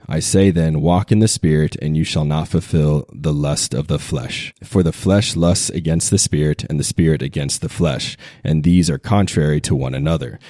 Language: English